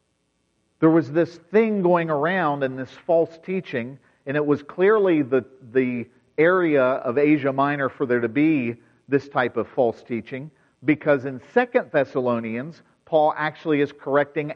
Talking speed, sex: 150 wpm, male